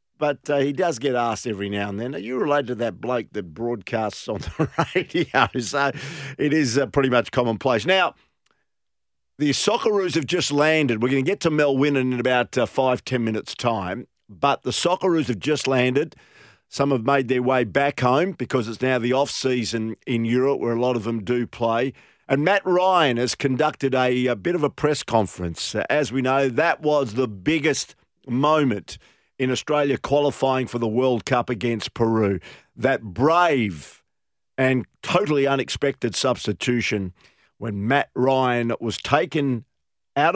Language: English